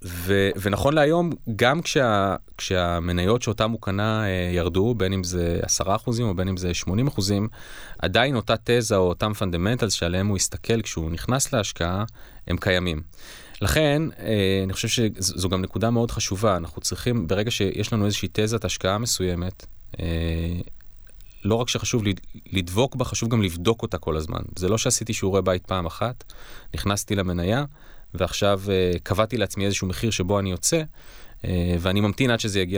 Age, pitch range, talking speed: 30-49, 90-115 Hz, 155 wpm